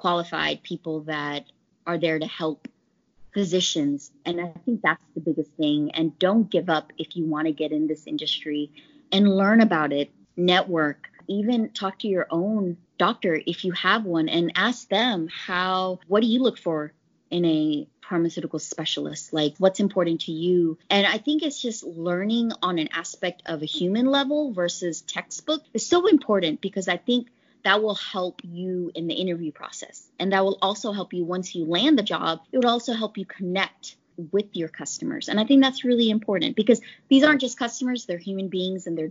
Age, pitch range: 20-39, 165-205 Hz